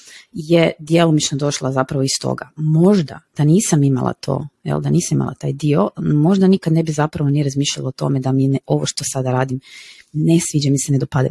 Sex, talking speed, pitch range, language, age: female, 205 wpm, 145-190 Hz, Croatian, 30-49